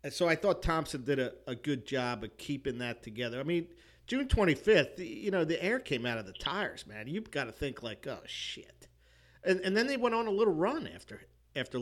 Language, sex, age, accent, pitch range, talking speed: English, male, 50-69, American, 115-145 Hz, 230 wpm